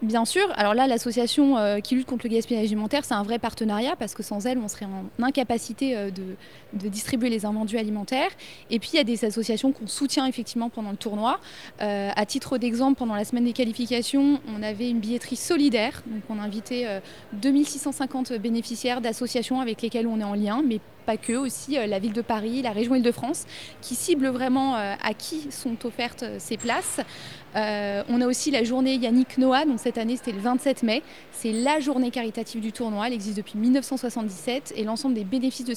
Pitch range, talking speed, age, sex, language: 220-260 Hz, 200 wpm, 20-39, female, French